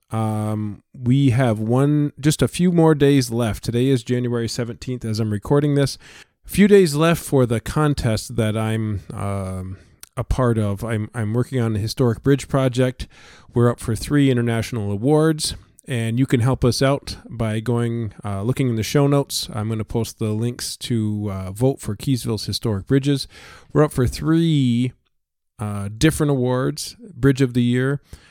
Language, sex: English, male